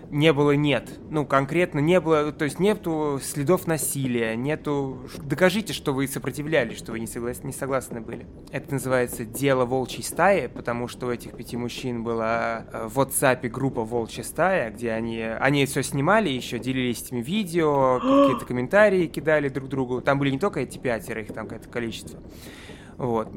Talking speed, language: 170 wpm, Russian